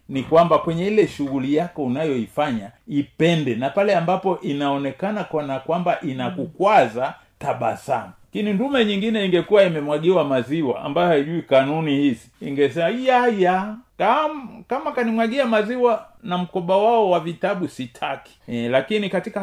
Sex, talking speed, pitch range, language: male, 135 wpm, 125-180 Hz, Swahili